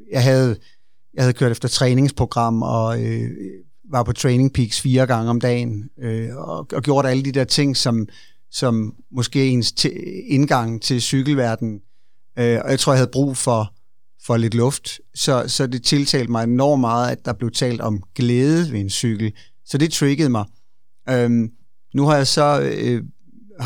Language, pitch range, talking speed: Danish, 120-140 Hz, 175 wpm